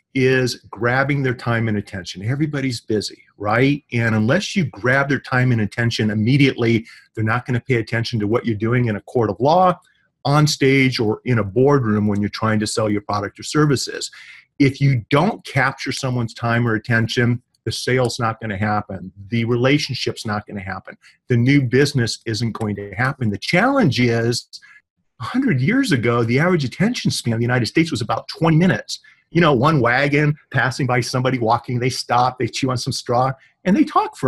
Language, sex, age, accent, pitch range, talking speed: English, male, 40-59, American, 115-145 Hz, 190 wpm